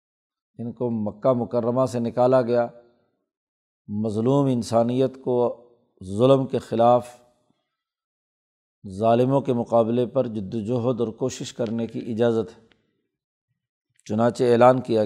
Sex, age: male, 50-69